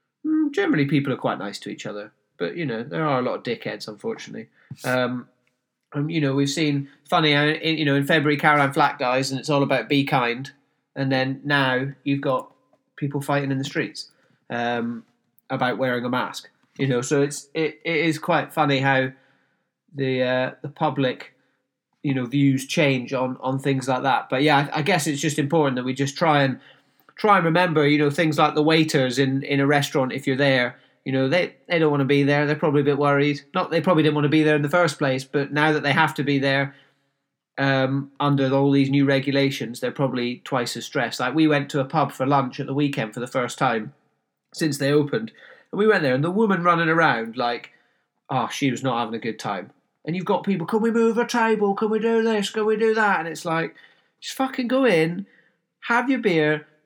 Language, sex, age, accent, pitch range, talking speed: English, male, 30-49, British, 135-160 Hz, 225 wpm